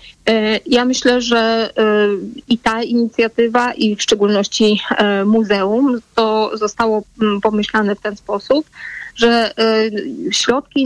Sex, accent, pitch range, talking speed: female, native, 200-245 Hz, 100 wpm